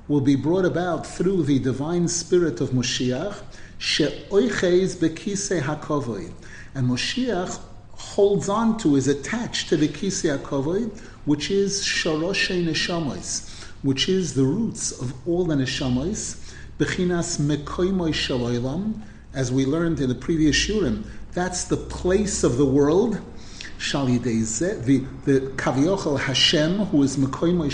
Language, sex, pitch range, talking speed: English, male, 130-180 Hz, 130 wpm